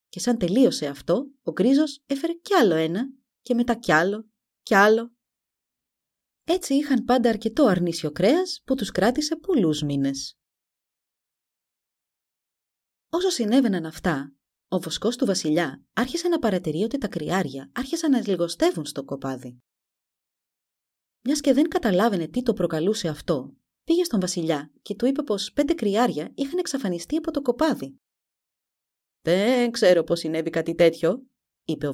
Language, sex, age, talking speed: Greek, female, 30-49, 140 wpm